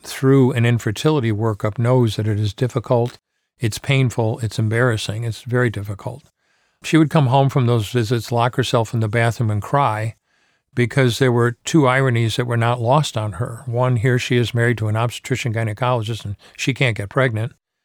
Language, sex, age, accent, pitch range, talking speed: English, male, 50-69, American, 115-135 Hz, 180 wpm